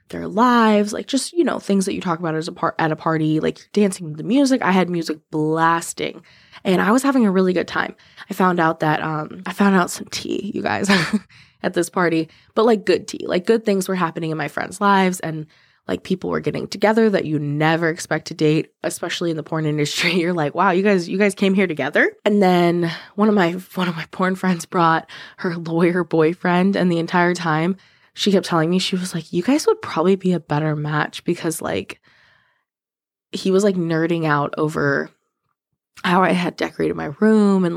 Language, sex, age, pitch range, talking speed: English, female, 20-39, 165-200 Hz, 220 wpm